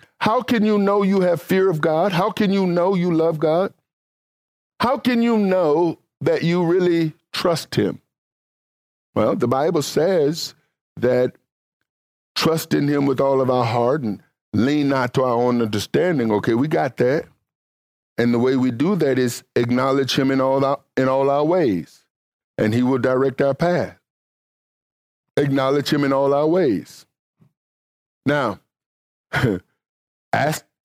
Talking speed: 155 wpm